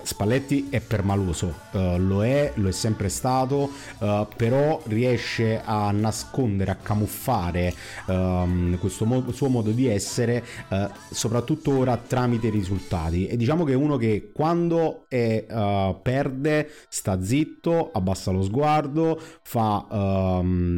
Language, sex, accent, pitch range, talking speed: Italian, male, native, 95-125 Hz, 135 wpm